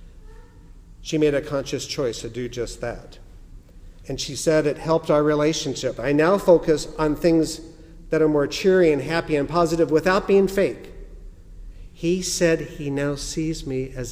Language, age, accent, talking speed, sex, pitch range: English, 50-69, American, 165 wpm, male, 95-150 Hz